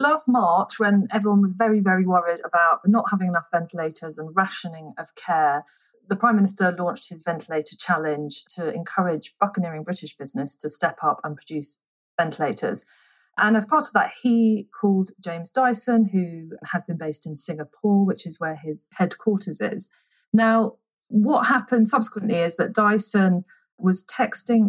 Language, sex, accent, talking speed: English, female, British, 160 wpm